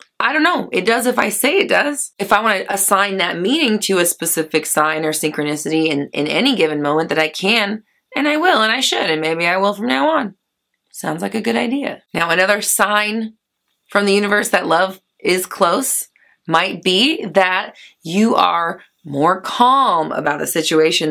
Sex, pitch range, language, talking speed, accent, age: female, 165-235 Hz, English, 195 wpm, American, 20-39